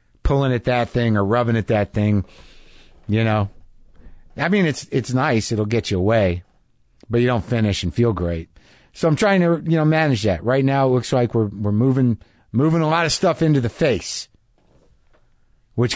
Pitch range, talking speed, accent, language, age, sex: 105-145 Hz, 195 wpm, American, English, 50-69, male